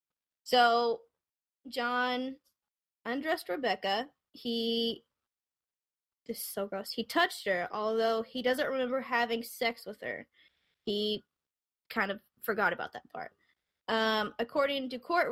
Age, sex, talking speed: 10-29, female, 120 wpm